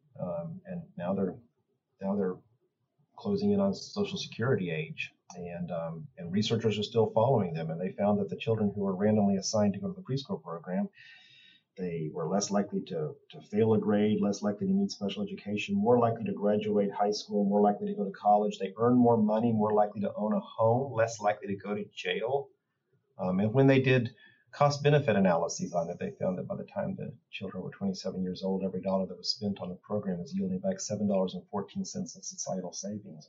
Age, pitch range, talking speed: 40-59, 95-150 Hz, 215 wpm